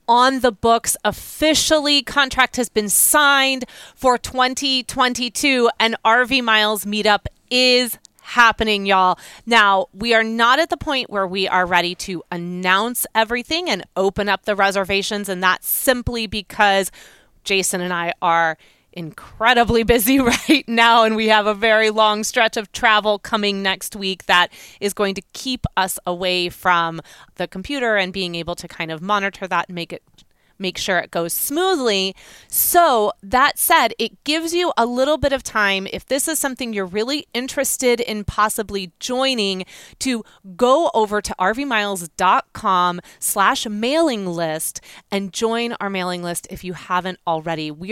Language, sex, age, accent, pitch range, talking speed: English, female, 30-49, American, 185-240 Hz, 155 wpm